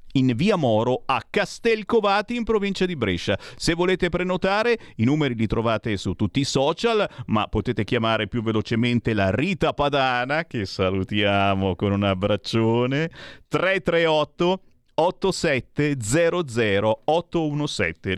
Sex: male